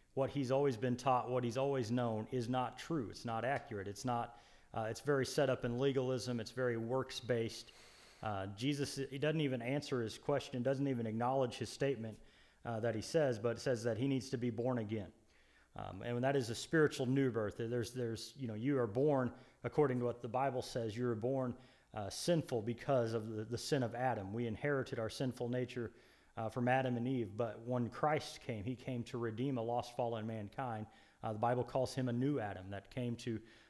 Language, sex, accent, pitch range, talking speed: English, male, American, 115-135 Hz, 215 wpm